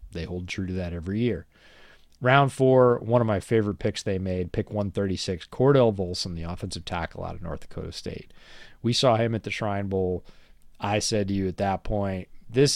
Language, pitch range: English, 90-115 Hz